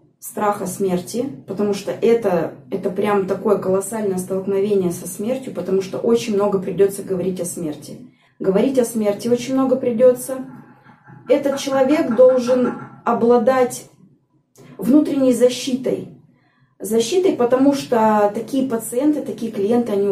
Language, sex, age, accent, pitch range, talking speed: Russian, female, 20-39, native, 195-245 Hz, 120 wpm